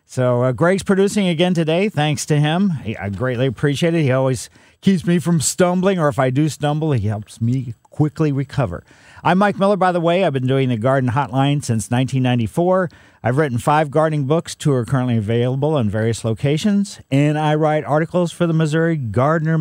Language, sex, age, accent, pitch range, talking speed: English, male, 50-69, American, 125-165 Hz, 195 wpm